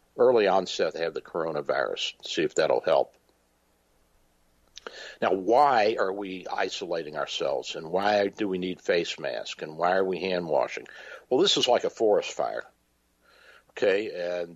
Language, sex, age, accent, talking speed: English, male, 60-79, American, 155 wpm